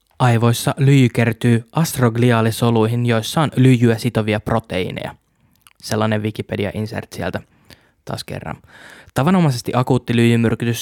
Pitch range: 115-125 Hz